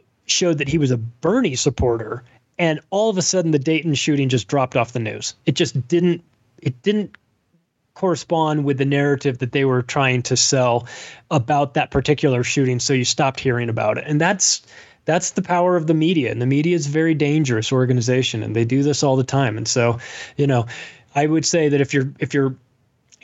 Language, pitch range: English, 125-155 Hz